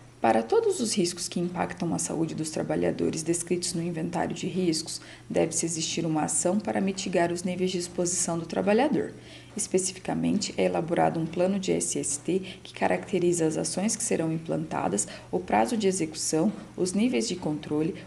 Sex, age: female, 40-59